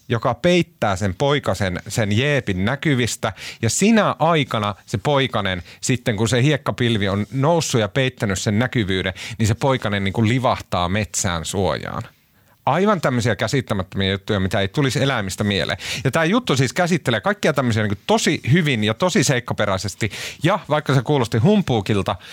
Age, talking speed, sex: 30-49, 155 wpm, male